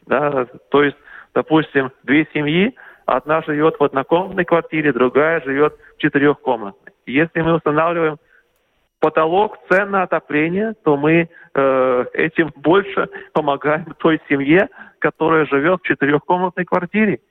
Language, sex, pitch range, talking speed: Russian, male, 140-180 Hz, 120 wpm